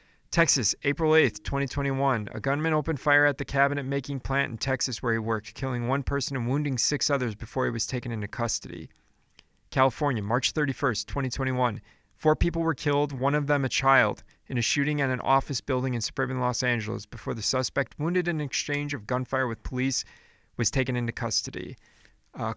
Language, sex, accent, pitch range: English, male, American, 115-140 Hz